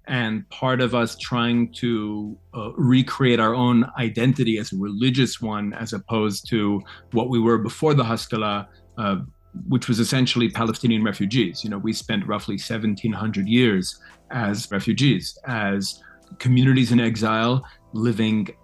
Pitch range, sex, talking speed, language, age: 110-130 Hz, male, 140 wpm, English, 40-59